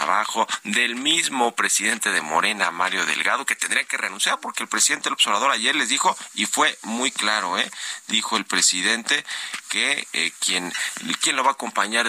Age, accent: 40-59, Mexican